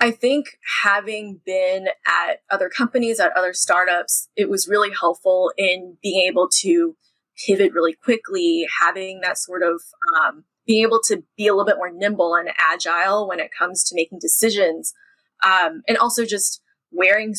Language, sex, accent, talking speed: English, female, American, 165 wpm